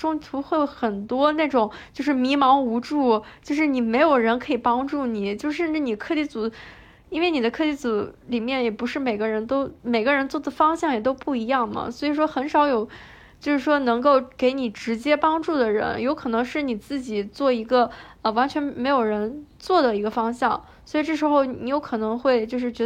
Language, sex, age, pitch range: Chinese, female, 10-29, 235-295 Hz